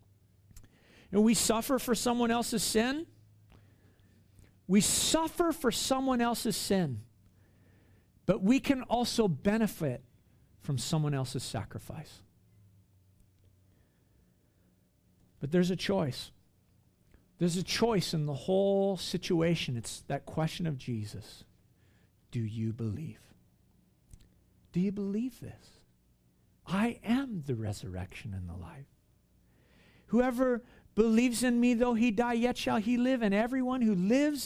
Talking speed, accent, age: 115 wpm, American, 50-69